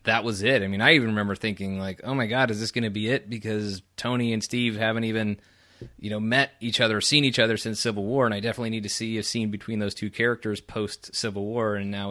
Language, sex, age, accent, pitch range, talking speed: English, male, 30-49, American, 100-115 Hz, 270 wpm